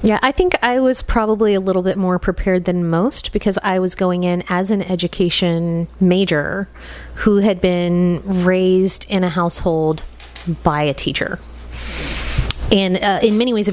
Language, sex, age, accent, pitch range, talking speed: English, female, 30-49, American, 165-200 Hz, 165 wpm